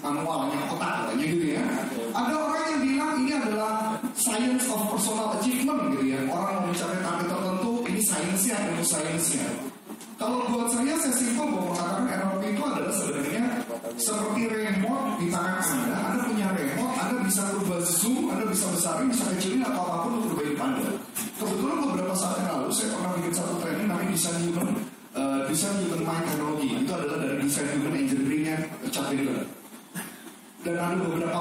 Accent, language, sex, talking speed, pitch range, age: native, Indonesian, male, 165 wpm, 175-245 Hz, 30-49